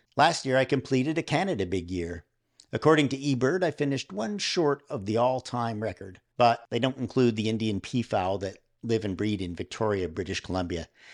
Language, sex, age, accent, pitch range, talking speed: English, male, 50-69, American, 95-130 Hz, 185 wpm